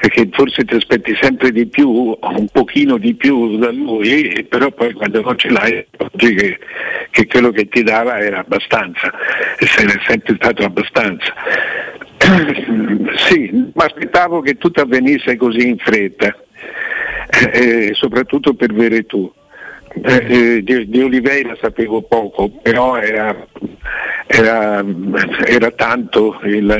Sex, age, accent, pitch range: male, 60-79, native, 105-145 Hz